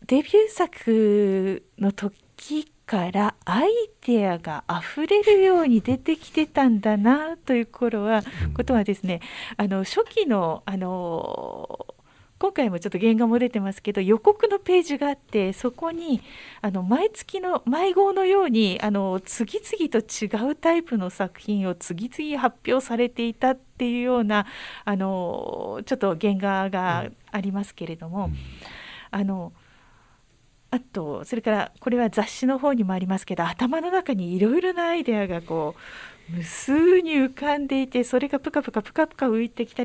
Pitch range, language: 190-275 Hz, Japanese